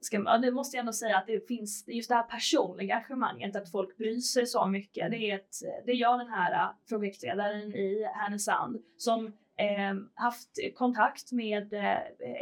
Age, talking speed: 20-39, 175 wpm